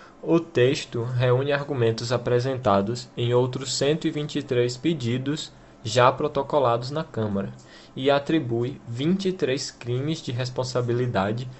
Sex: male